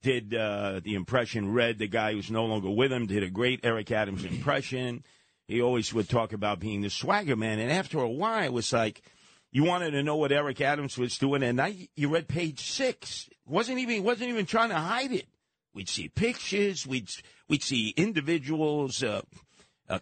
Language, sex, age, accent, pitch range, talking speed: English, male, 50-69, American, 110-155 Hz, 200 wpm